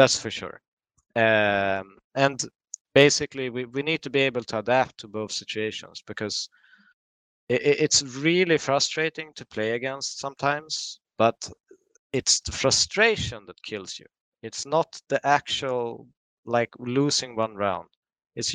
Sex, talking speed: male, 135 wpm